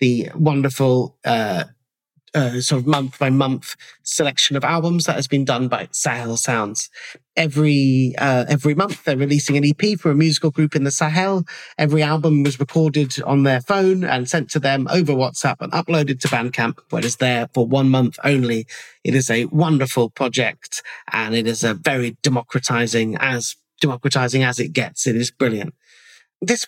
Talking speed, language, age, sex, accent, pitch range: 180 wpm, English, 30-49, male, British, 130-155 Hz